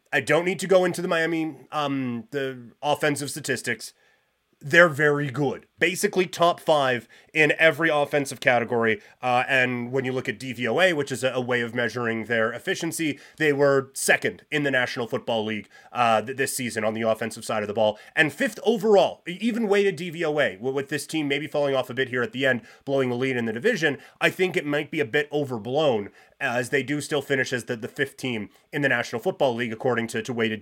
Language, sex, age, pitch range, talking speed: English, male, 30-49, 125-170 Hz, 210 wpm